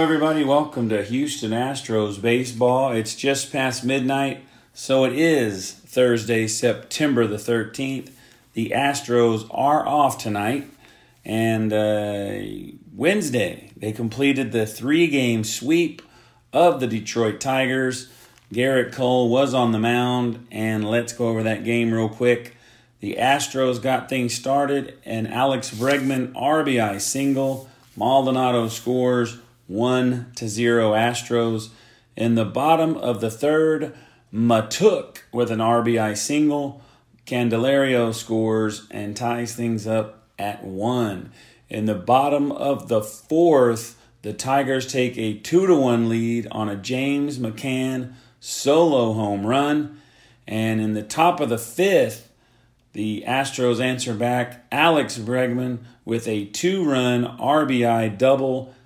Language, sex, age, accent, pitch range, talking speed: English, male, 40-59, American, 115-135 Hz, 125 wpm